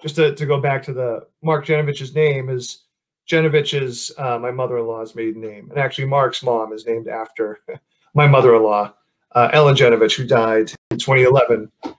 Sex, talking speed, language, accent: male, 155 wpm, English, American